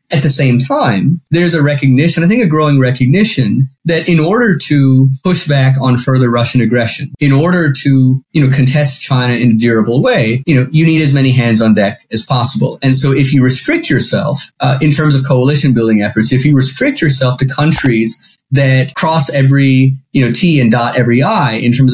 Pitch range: 125-155 Hz